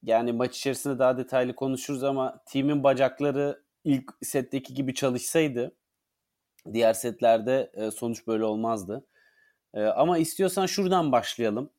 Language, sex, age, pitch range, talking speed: Turkish, male, 30-49, 120-150 Hz, 110 wpm